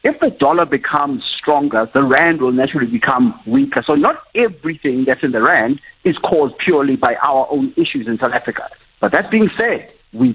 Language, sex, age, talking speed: English, male, 60-79, 190 wpm